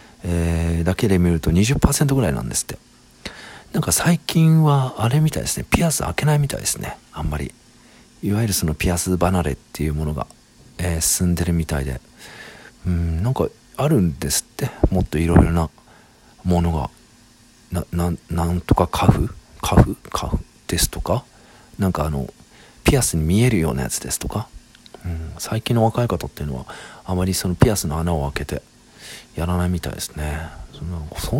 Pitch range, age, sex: 80-120 Hz, 40-59, male